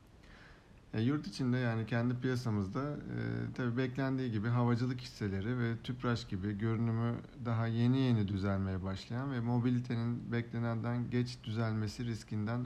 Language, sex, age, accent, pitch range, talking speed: Turkish, male, 50-69, native, 105-125 Hz, 120 wpm